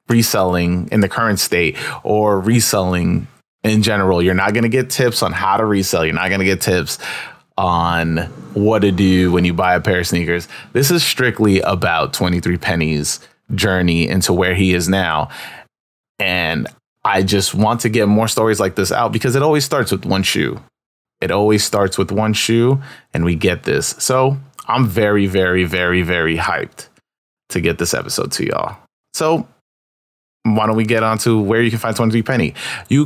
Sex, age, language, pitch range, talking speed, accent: male, 30-49, English, 90-115 Hz, 185 wpm, American